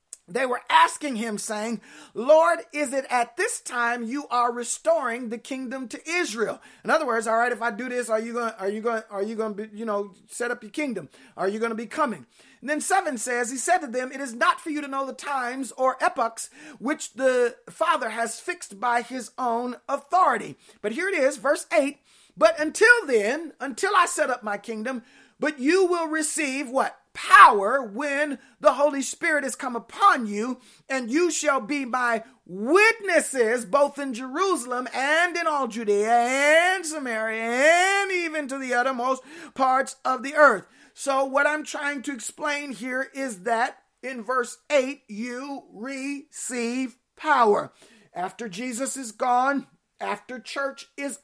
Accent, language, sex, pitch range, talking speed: American, English, male, 240-295 Hz, 180 wpm